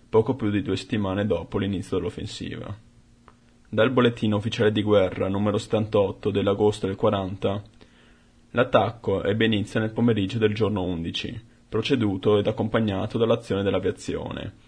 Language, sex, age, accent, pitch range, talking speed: Italian, male, 20-39, native, 100-115 Hz, 125 wpm